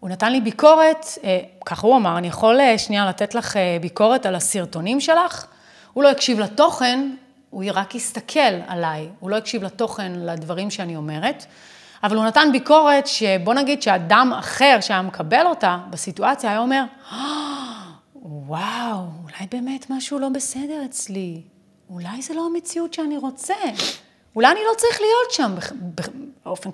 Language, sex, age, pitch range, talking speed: Hebrew, female, 30-49, 195-280 Hz, 150 wpm